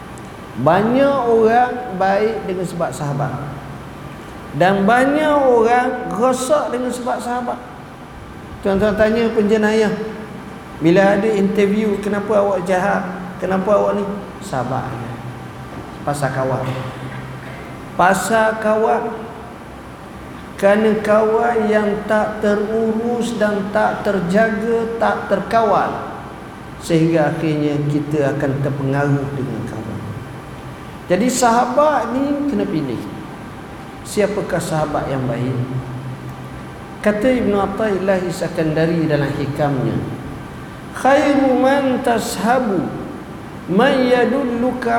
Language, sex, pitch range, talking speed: Malay, male, 165-235 Hz, 90 wpm